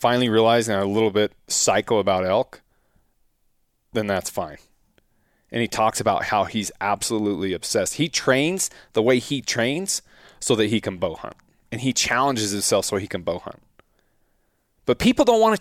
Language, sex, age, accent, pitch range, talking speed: English, male, 30-49, American, 100-135 Hz, 175 wpm